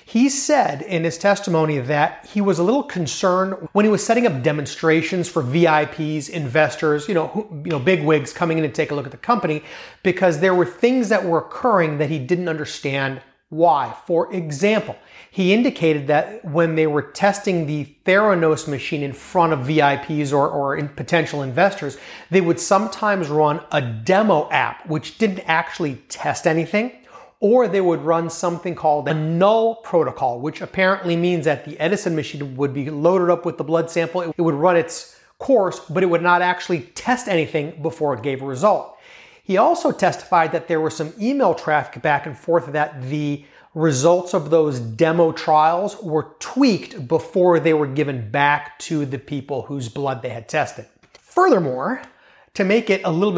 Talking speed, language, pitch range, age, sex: 180 wpm, English, 150-185 Hz, 30-49, male